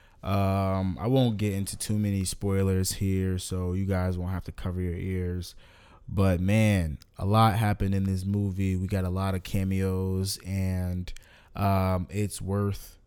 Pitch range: 95-105 Hz